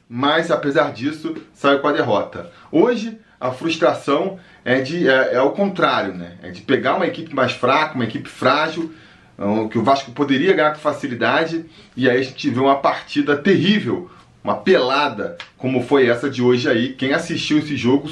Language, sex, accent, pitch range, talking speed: Portuguese, male, Brazilian, 125-185 Hz, 175 wpm